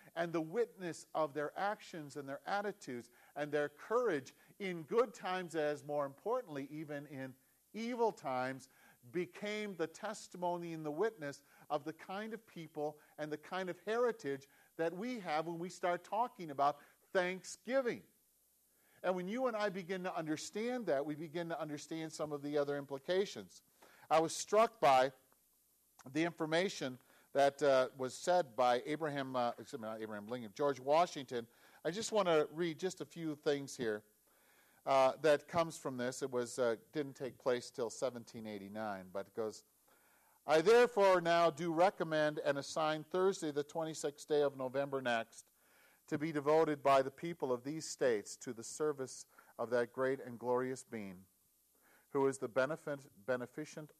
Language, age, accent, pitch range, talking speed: English, 50-69, American, 130-175 Hz, 165 wpm